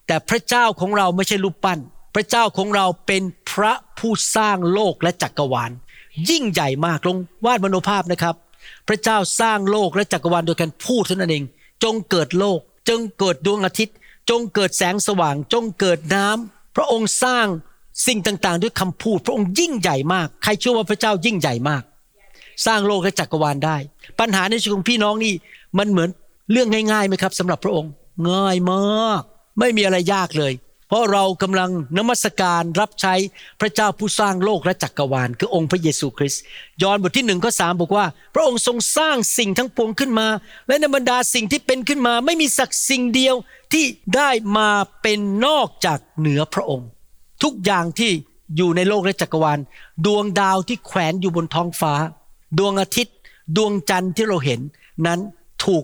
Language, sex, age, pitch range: Thai, male, 60-79, 175-220 Hz